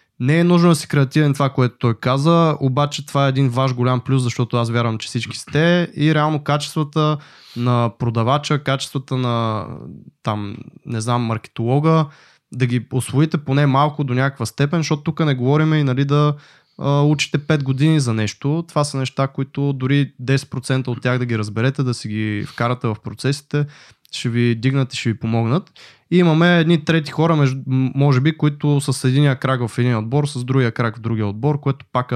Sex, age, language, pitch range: male, 20-39, Bulgarian, 125-150 Hz